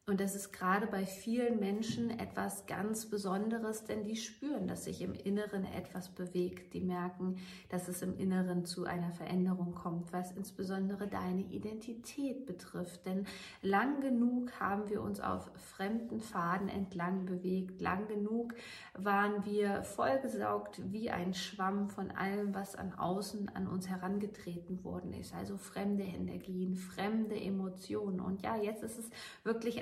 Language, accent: German, German